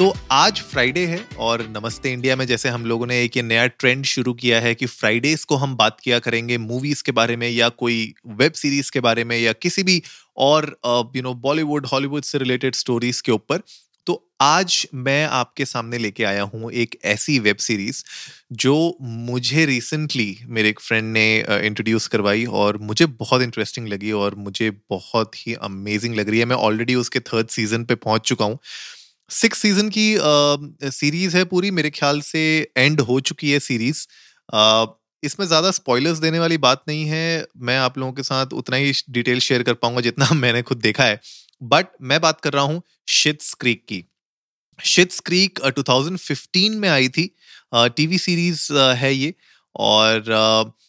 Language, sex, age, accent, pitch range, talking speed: Hindi, male, 30-49, native, 115-145 Hz, 180 wpm